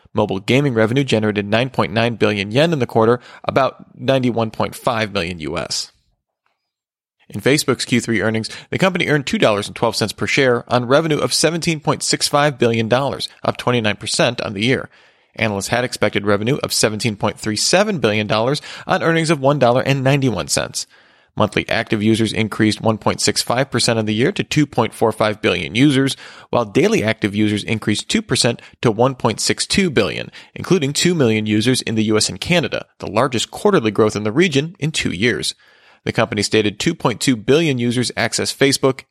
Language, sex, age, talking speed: English, male, 40-59, 145 wpm